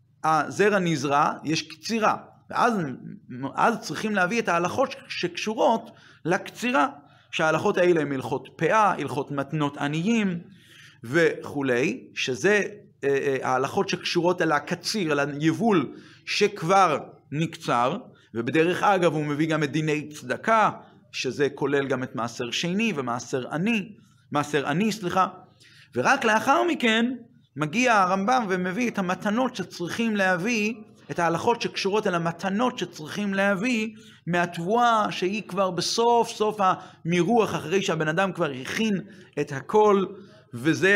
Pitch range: 150-210 Hz